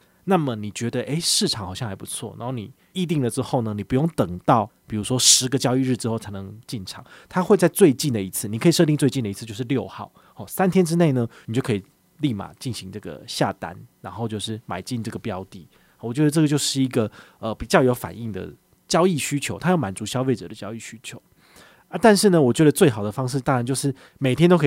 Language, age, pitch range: Chinese, 20-39, 110-150 Hz